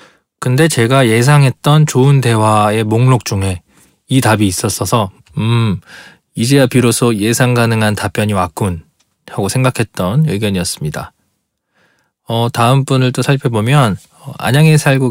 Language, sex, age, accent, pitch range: Korean, male, 20-39, native, 110-150 Hz